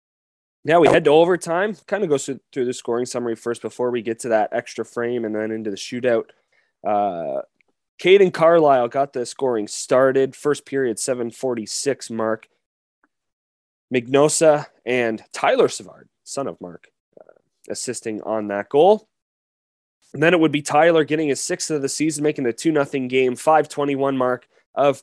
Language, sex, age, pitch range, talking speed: English, male, 20-39, 115-155 Hz, 160 wpm